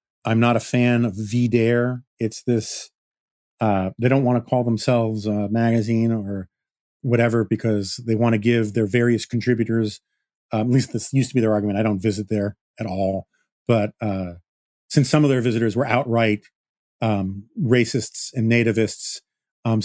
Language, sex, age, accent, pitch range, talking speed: English, male, 40-59, American, 110-125 Hz, 170 wpm